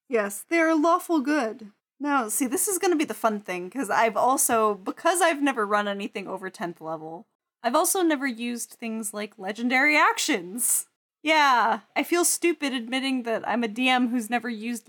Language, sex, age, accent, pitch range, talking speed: English, female, 10-29, American, 200-290 Hz, 185 wpm